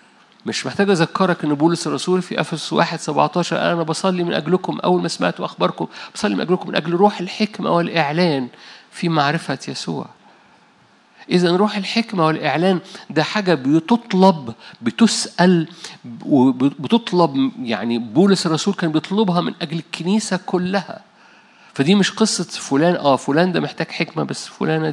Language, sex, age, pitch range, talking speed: Arabic, male, 50-69, 150-190 Hz, 135 wpm